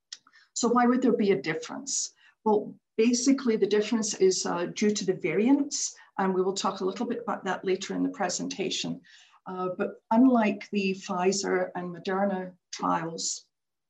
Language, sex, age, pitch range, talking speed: English, female, 50-69, 185-220 Hz, 165 wpm